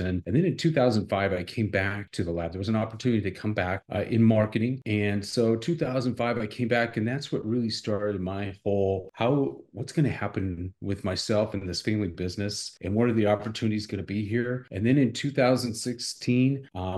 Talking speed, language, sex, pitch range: 200 wpm, English, male, 100-125 Hz